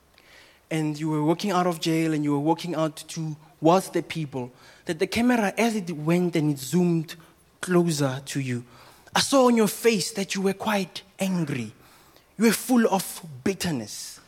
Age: 20-39